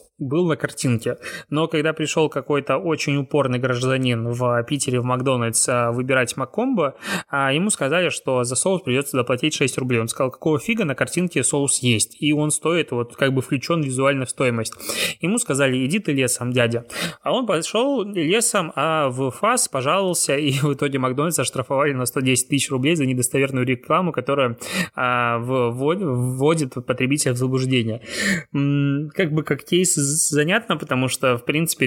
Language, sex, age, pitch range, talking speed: Russian, male, 20-39, 130-155 Hz, 155 wpm